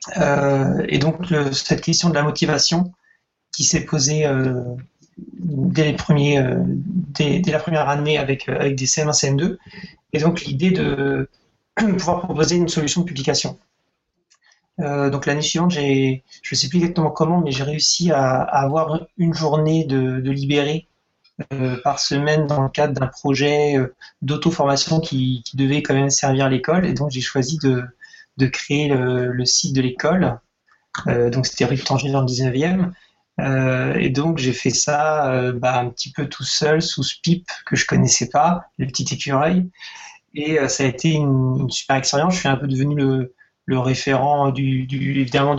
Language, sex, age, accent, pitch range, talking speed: French, male, 30-49, French, 130-155 Hz, 180 wpm